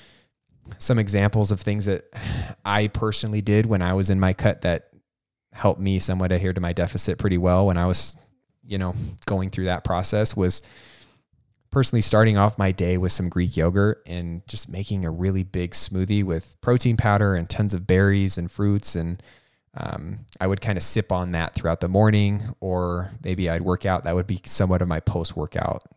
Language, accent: English, American